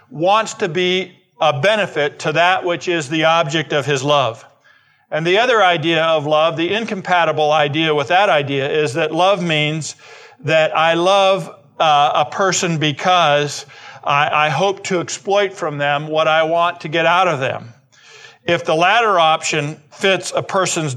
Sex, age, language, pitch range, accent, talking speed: male, 50-69, English, 150-185 Hz, American, 170 wpm